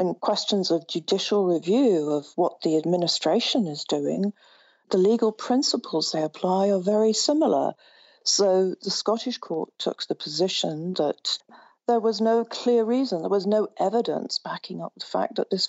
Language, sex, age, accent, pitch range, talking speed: English, female, 50-69, British, 185-240 Hz, 160 wpm